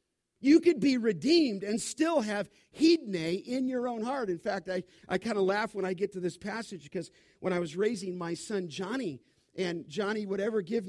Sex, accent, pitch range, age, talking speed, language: male, American, 195-275 Hz, 50-69, 210 wpm, English